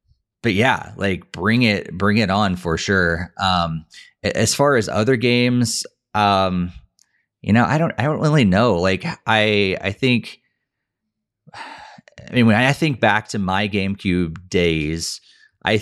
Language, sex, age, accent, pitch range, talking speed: English, male, 30-49, American, 95-115 Hz, 150 wpm